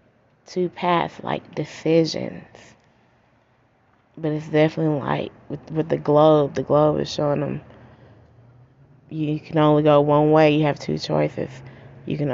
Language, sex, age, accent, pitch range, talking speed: English, female, 20-39, American, 130-160 Hz, 140 wpm